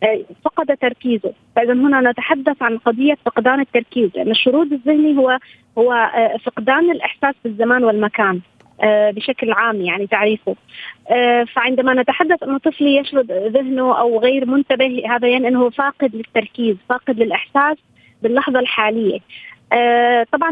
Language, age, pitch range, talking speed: Arabic, 30-49, 230-290 Hz, 120 wpm